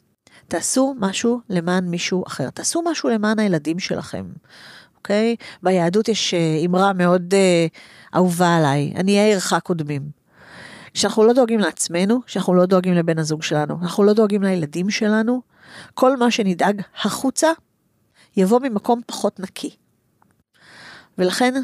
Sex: female